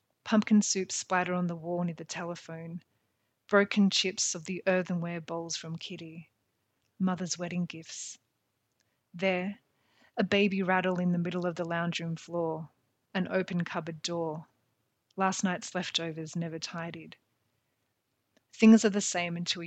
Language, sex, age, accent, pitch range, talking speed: English, female, 30-49, Australian, 165-185 Hz, 140 wpm